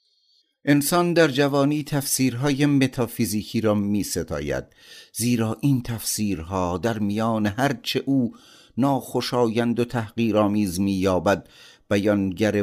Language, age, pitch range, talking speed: Persian, 50-69, 100-125 Hz, 95 wpm